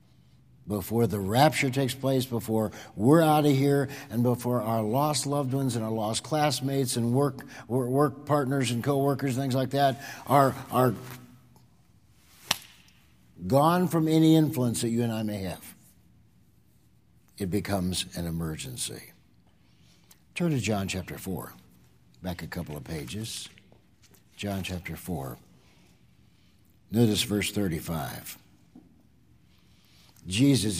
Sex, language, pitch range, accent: male, English, 105-130 Hz, American